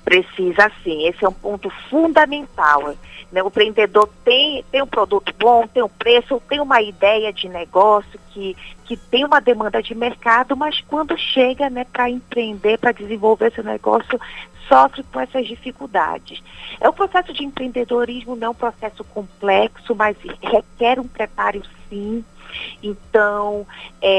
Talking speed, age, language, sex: 150 wpm, 40-59, Portuguese, female